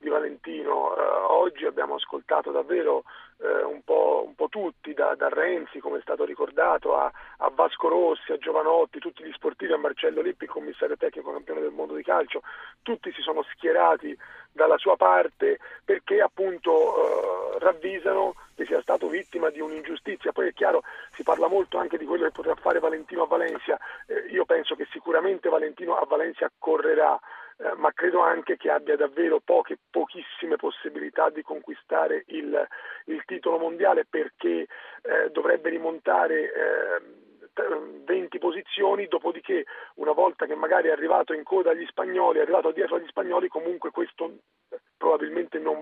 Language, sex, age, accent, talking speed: Italian, male, 40-59, native, 155 wpm